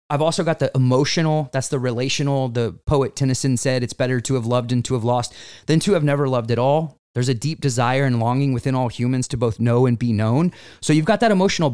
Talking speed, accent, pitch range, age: 245 wpm, American, 120-155 Hz, 30-49